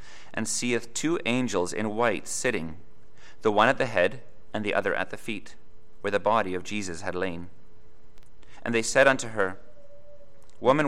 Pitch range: 100-120 Hz